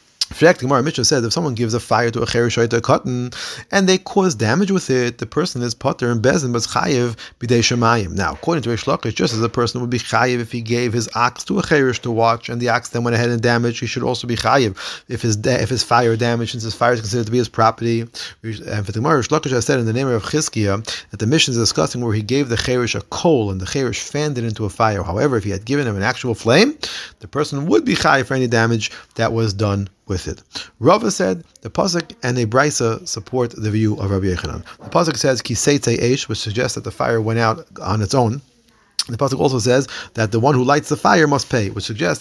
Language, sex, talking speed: English, male, 250 wpm